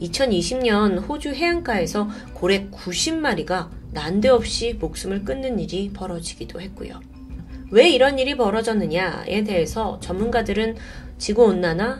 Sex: female